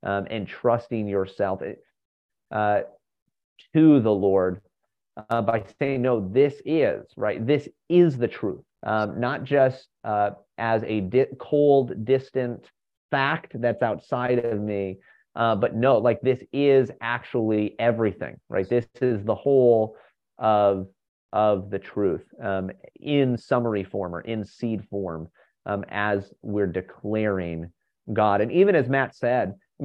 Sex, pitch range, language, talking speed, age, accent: male, 100-135 Hz, English, 135 wpm, 30-49, American